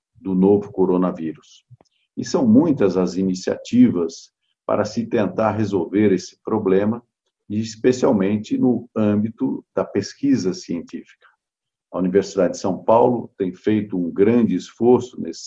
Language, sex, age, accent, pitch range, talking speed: Portuguese, male, 50-69, Brazilian, 100-130 Hz, 120 wpm